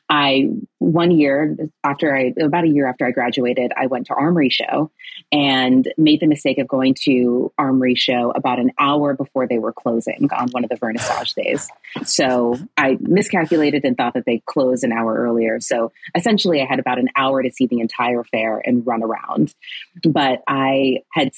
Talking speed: 190 wpm